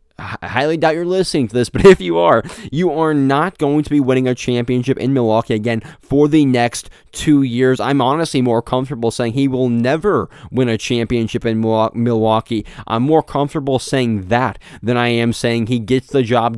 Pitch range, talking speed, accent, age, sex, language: 115-145 Hz, 195 wpm, American, 20-39, male, English